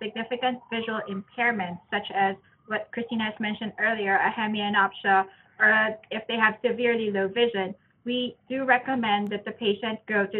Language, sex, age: English, female, 20-39